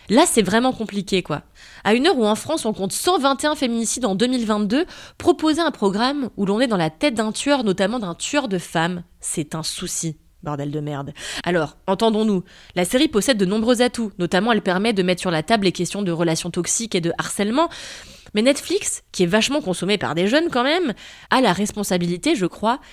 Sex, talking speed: female, 205 wpm